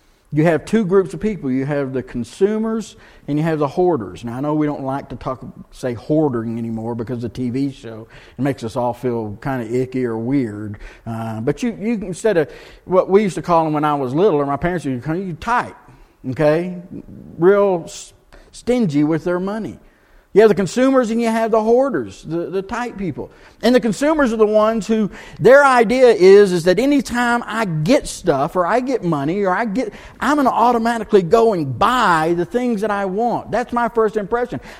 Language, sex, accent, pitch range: English, male, American, 145-230 Hz